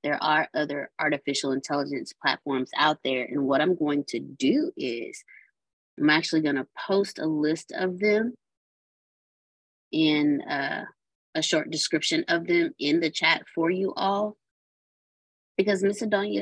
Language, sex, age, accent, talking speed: English, female, 20-39, American, 145 wpm